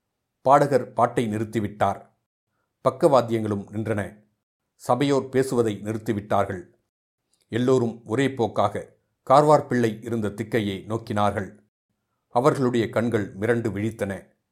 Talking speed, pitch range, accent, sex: 80 wpm, 105-120 Hz, native, male